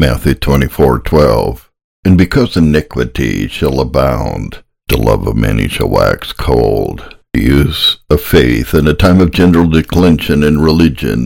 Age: 60-79